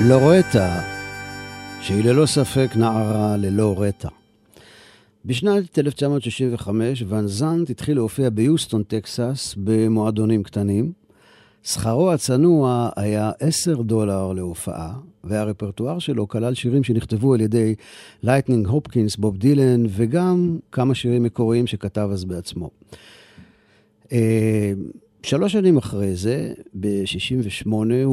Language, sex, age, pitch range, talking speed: Hebrew, male, 50-69, 105-135 Hz, 100 wpm